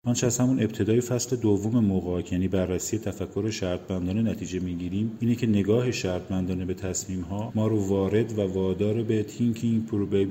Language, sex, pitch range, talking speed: Persian, male, 95-110 Hz, 170 wpm